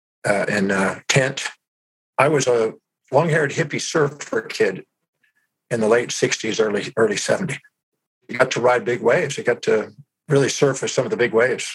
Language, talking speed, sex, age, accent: English, 180 wpm, male, 50-69, American